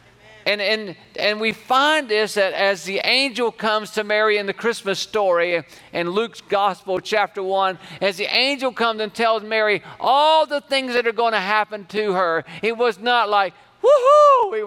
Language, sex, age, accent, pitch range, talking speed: English, male, 50-69, American, 165-230 Hz, 185 wpm